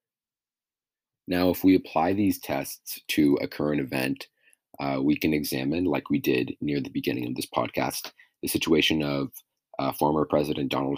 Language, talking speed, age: English, 165 wpm, 30-49